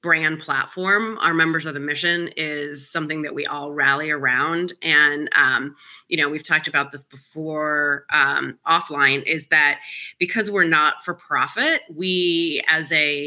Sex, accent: female, American